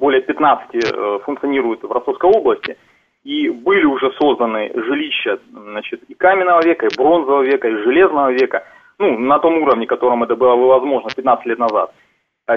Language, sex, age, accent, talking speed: Russian, male, 30-49, native, 155 wpm